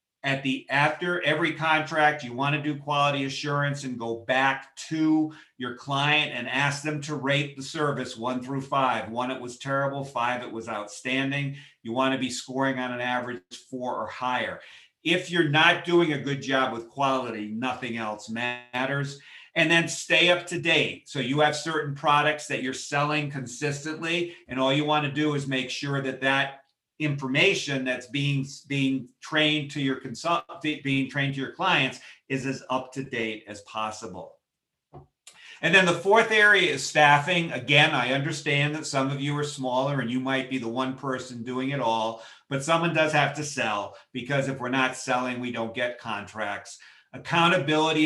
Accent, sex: American, male